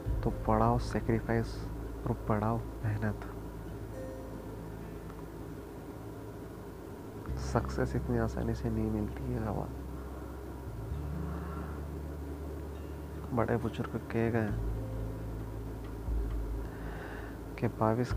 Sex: male